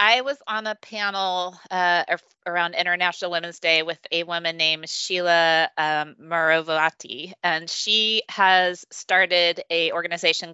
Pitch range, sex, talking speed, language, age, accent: 170-200 Hz, female, 130 wpm, English, 20-39, American